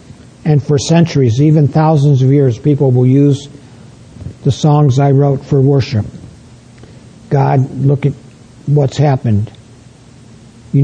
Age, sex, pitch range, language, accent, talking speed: 60-79, male, 120-145 Hz, English, American, 120 wpm